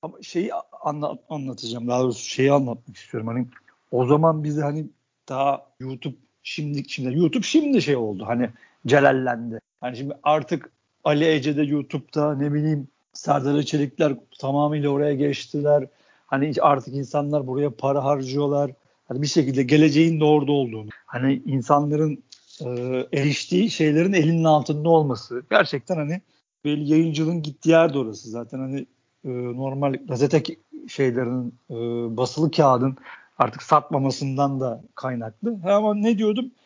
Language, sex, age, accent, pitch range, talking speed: Turkish, male, 50-69, native, 135-170 Hz, 135 wpm